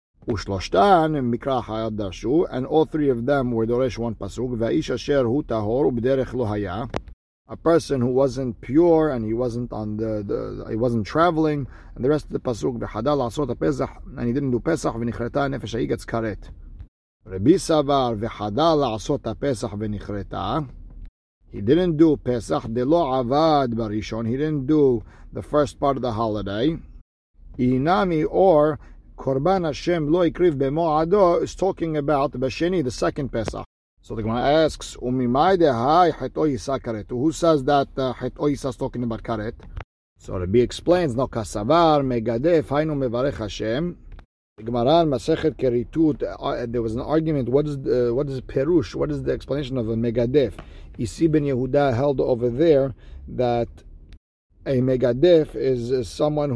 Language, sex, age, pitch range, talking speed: English, male, 50-69, 110-145 Hz, 125 wpm